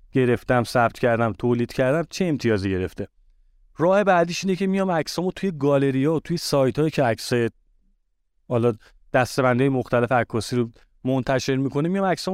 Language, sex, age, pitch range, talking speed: Persian, male, 30-49, 125-165 Hz, 150 wpm